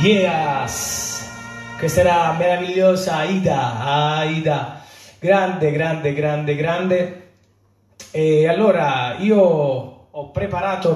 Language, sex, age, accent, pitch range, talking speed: Italian, male, 30-49, native, 140-190 Hz, 90 wpm